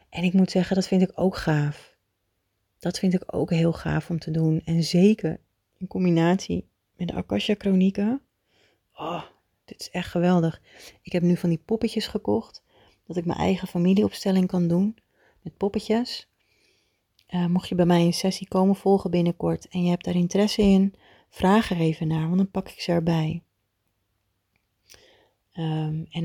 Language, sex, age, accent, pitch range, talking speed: Dutch, female, 30-49, Dutch, 145-180 Hz, 170 wpm